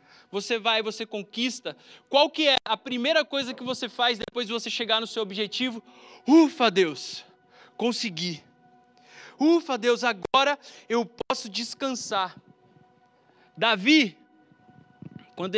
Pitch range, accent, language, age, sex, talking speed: 180-225 Hz, Brazilian, Portuguese, 20-39, male, 120 wpm